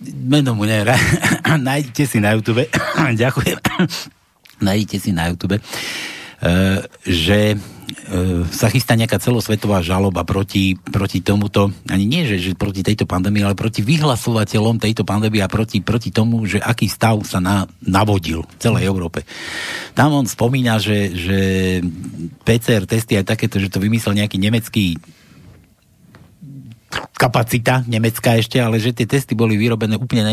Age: 60-79